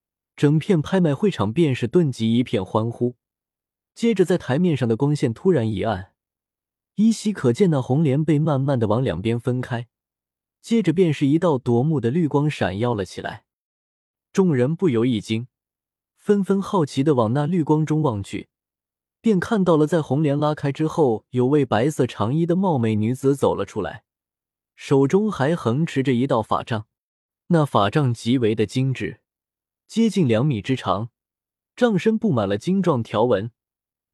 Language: Chinese